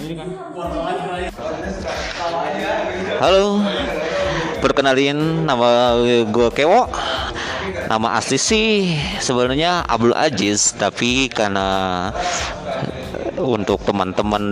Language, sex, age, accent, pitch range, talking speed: Indonesian, male, 30-49, native, 110-165 Hz, 60 wpm